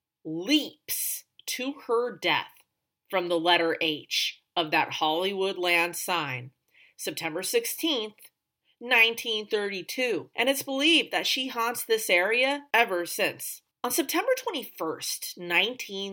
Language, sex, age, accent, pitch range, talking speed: English, female, 30-49, American, 170-230 Hz, 110 wpm